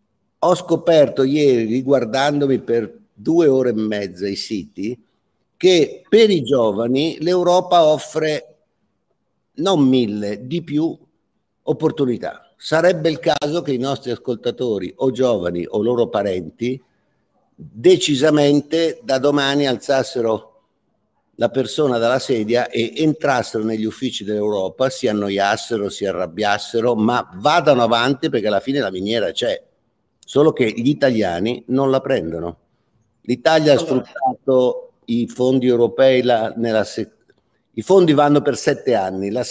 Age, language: 50-69, Italian